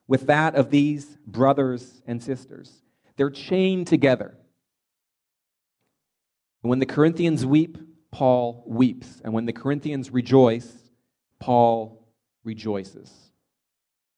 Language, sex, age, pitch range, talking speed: English, male, 40-59, 110-135 Hz, 95 wpm